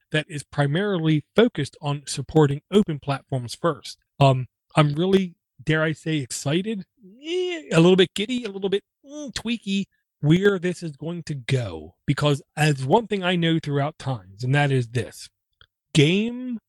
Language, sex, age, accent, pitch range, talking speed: English, male, 40-59, American, 140-180 Hz, 160 wpm